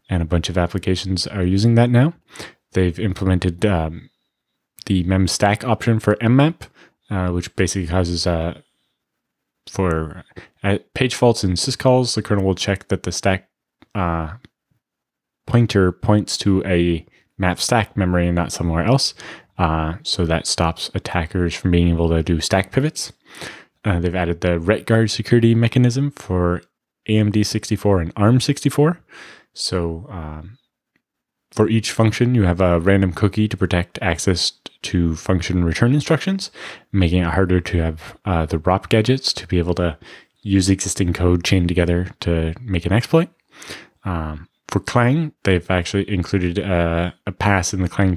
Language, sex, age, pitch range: English, male, 20-39, 90-110 Hz